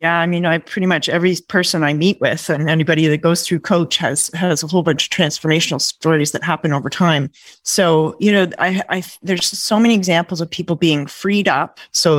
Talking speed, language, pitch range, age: 215 wpm, English, 160-185 Hz, 30-49